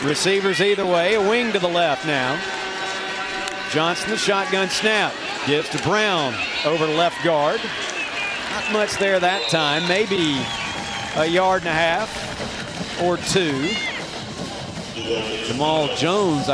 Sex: male